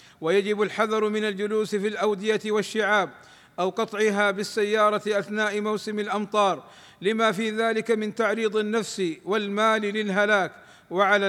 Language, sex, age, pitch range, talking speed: Arabic, male, 50-69, 200-220 Hz, 115 wpm